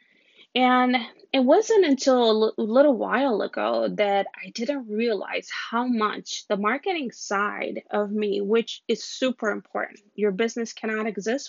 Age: 20-39